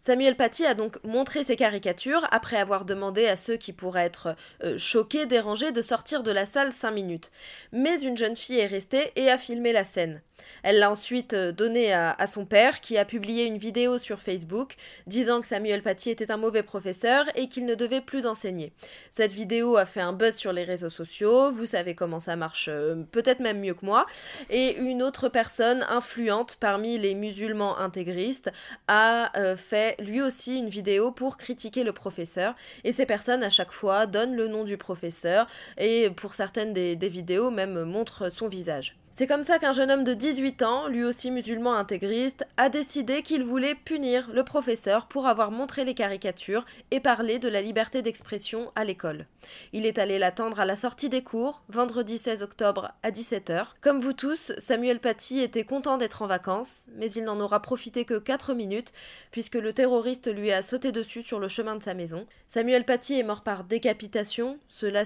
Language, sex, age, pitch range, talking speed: French, female, 20-39, 200-250 Hz, 195 wpm